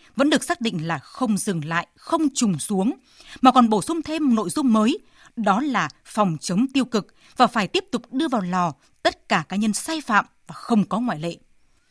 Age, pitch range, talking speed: 20-39, 195-265 Hz, 215 wpm